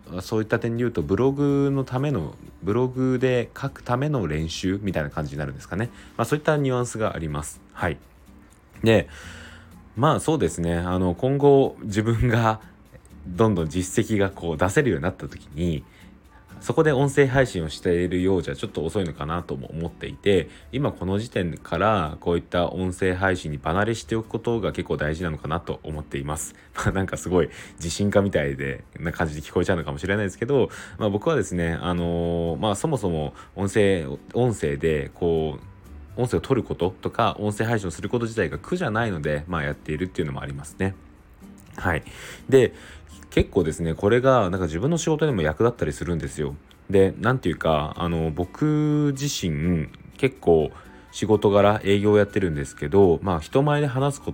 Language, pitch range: Japanese, 80-110 Hz